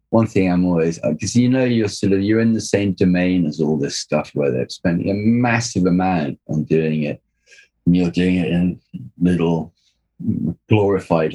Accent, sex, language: British, male, English